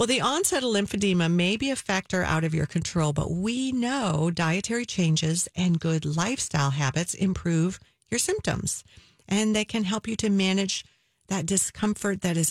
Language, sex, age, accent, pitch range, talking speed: English, female, 50-69, American, 155-205 Hz, 175 wpm